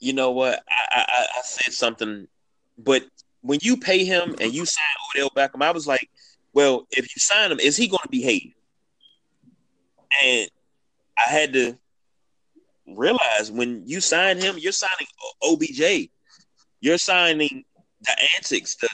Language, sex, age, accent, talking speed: English, male, 30-49, American, 155 wpm